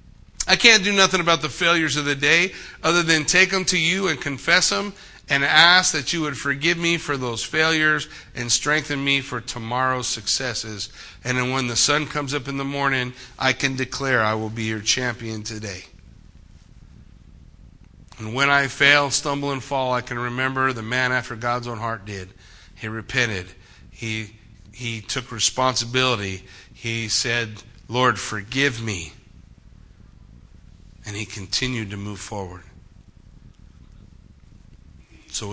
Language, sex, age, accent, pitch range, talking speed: English, male, 50-69, American, 105-130 Hz, 150 wpm